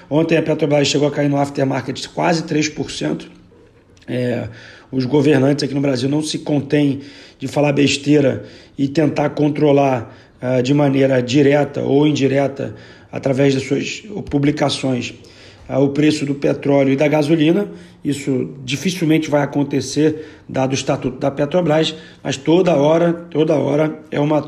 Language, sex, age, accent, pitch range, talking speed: Portuguese, male, 40-59, Brazilian, 135-155 Hz, 145 wpm